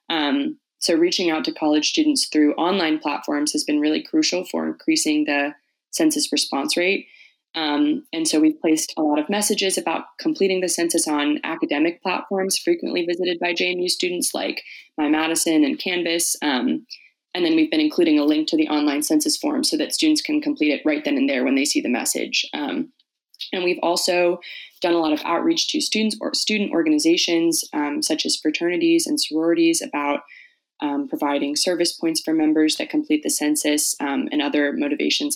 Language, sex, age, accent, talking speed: English, female, 20-39, American, 185 wpm